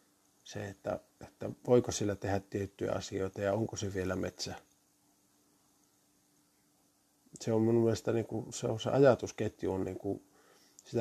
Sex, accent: male, native